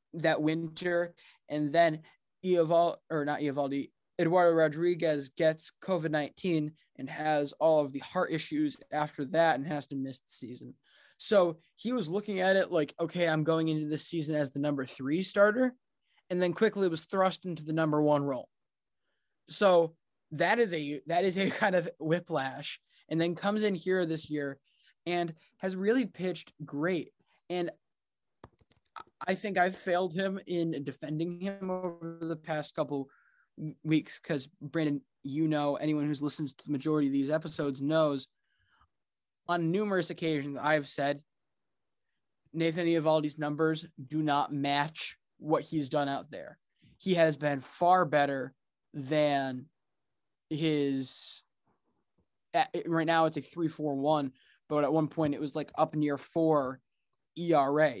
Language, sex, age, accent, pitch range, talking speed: English, male, 20-39, American, 145-175 Hz, 150 wpm